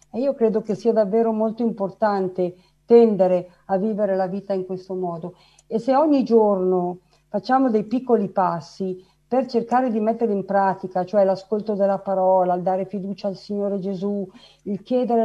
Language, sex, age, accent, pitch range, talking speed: Italian, female, 50-69, native, 190-230 Hz, 165 wpm